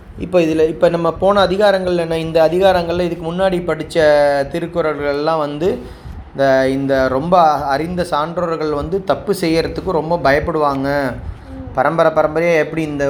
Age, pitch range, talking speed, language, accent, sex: 20-39, 140-175 Hz, 130 wpm, Tamil, native, male